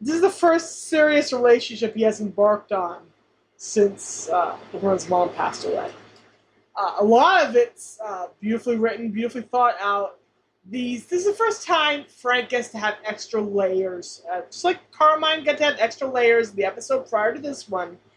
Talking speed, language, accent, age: 180 wpm, English, American, 30-49